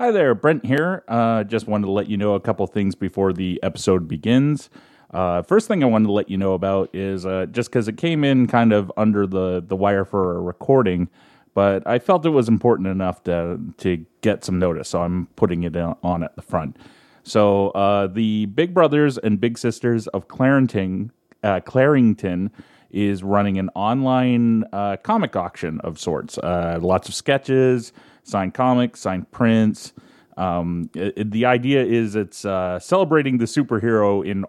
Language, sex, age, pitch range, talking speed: English, male, 30-49, 95-120 Hz, 180 wpm